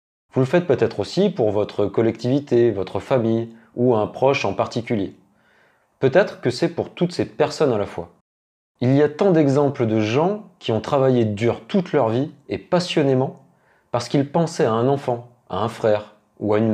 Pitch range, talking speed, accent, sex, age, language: 105-145 Hz, 190 wpm, French, male, 30-49, French